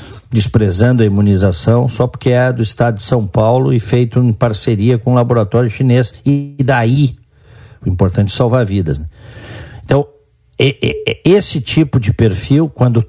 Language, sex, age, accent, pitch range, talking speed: Portuguese, male, 50-69, Brazilian, 110-145 Hz, 155 wpm